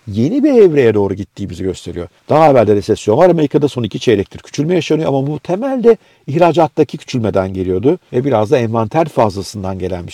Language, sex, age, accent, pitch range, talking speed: Turkish, male, 50-69, native, 105-140 Hz, 180 wpm